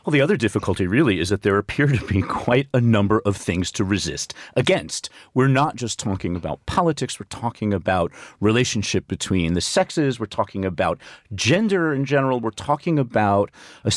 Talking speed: 180 wpm